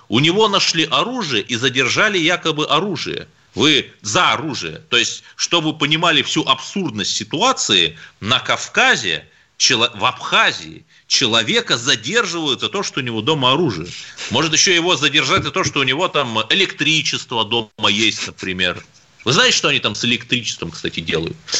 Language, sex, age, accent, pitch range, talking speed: Russian, male, 30-49, native, 125-190 Hz, 155 wpm